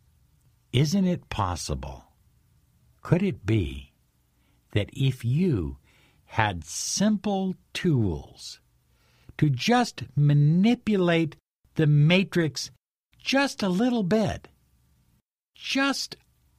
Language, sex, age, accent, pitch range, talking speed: English, male, 60-79, American, 100-165 Hz, 80 wpm